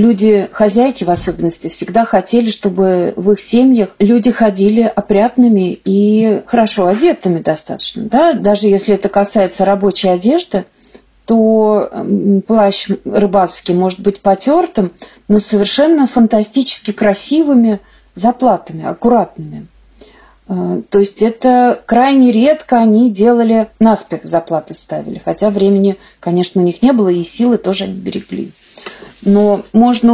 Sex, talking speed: female, 120 wpm